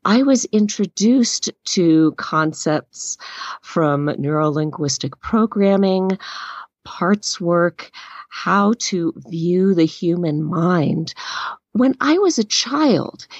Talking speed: 95 wpm